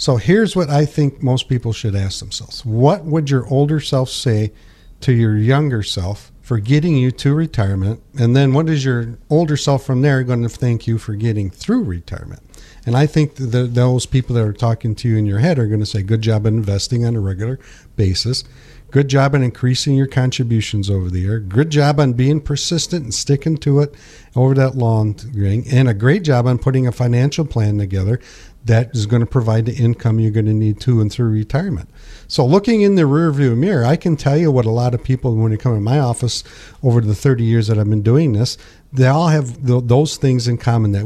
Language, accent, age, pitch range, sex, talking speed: English, American, 50-69, 110-140 Hz, male, 220 wpm